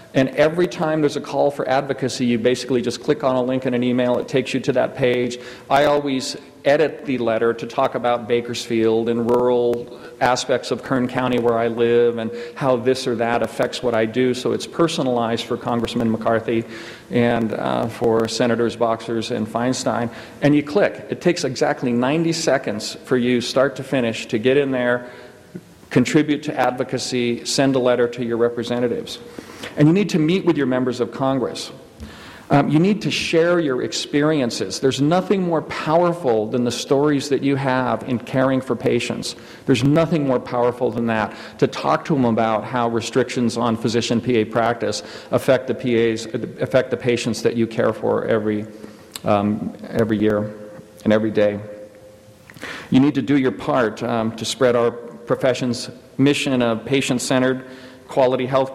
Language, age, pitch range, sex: English, 40-59, 115-135 Hz, male